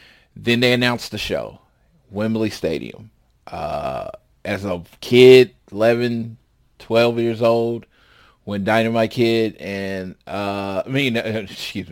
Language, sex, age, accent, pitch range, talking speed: English, male, 20-39, American, 95-115 Hz, 120 wpm